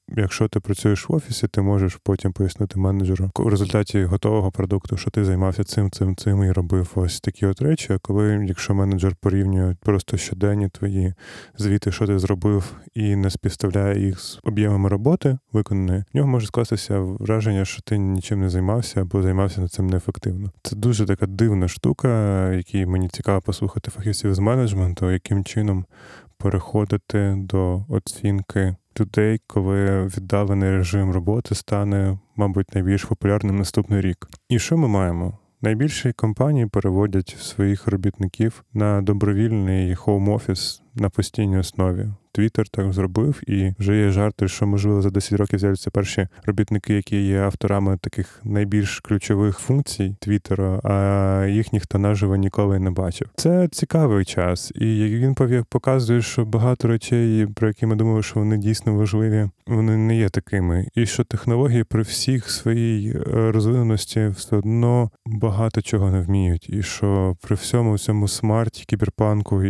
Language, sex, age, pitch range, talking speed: Ukrainian, male, 20-39, 95-110 Hz, 150 wpm